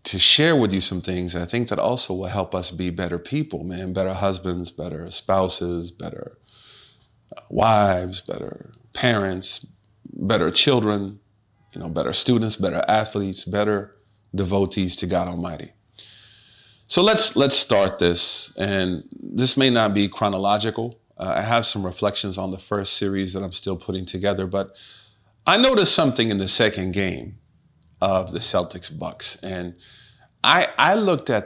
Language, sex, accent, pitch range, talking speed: English, male, American, 95-115 Hz, 155 wpm